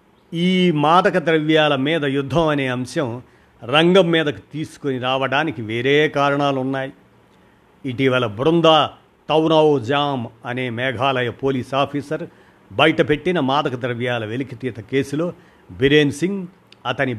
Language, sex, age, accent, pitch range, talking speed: Telugu, male, 50-69, native, 125-155 Hz, 100 wpm